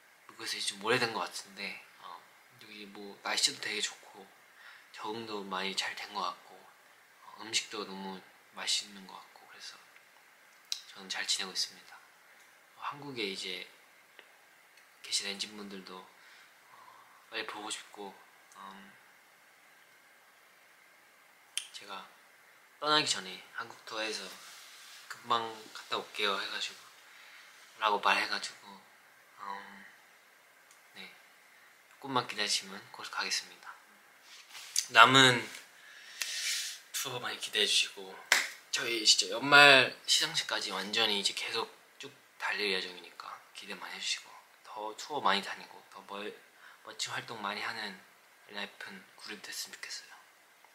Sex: male